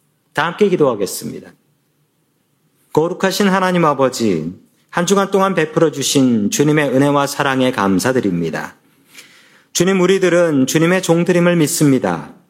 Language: Korean